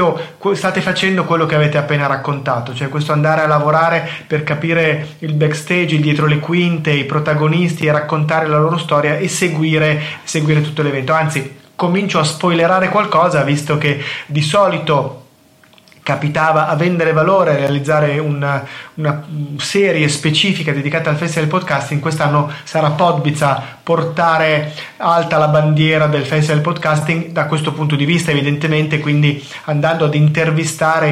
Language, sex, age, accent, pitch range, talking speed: Italian, male, 30-49, native, 145-165 Hz, 145 wpm